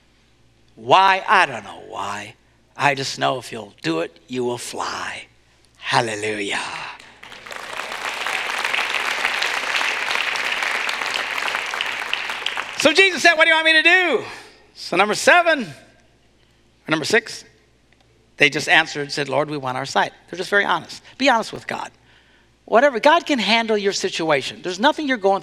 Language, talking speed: English, 140 wpm